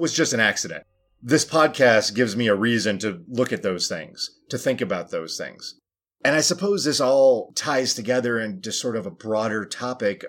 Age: 30-49